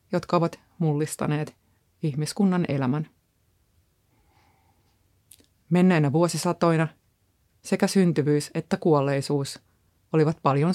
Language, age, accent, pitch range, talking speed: Finnish, 30-49, native, 130-165 Hz, 75 wpm